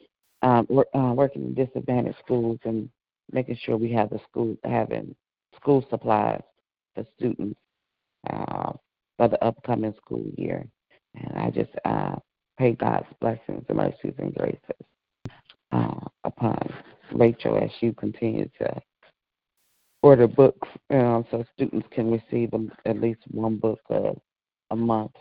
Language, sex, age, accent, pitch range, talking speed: English, female, 40-59, American, 105-120 Hz, 140 wpm